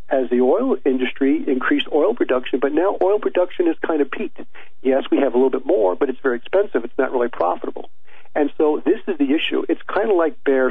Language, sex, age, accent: English, male, 50-69, American